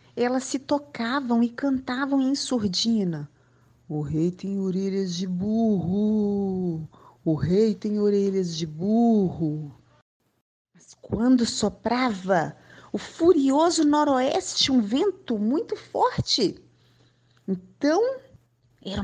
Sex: female